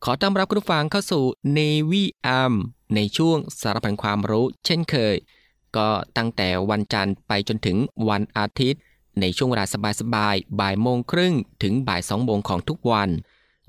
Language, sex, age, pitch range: Thai, male, 20-39, 100-135 Hz